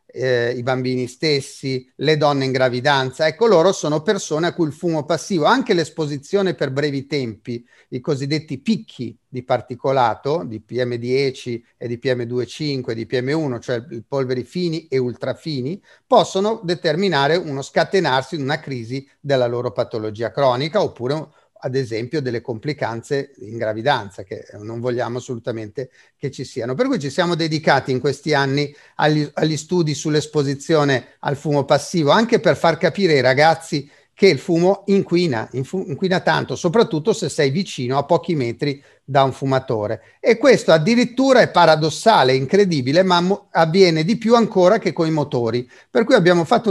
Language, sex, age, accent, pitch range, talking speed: Italian, male, 40-59, native, 130-170 Hz, 155 wpm